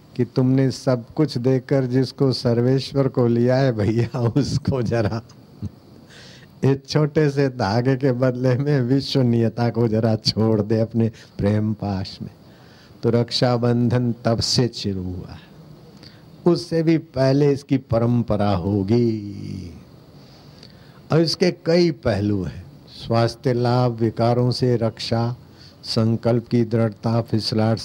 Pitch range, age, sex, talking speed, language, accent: 110-130 Hz, 60-79, male, 120 wpm, Hindi, native